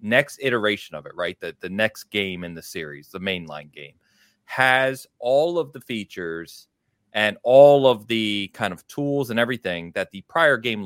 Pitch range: 90-130 Hz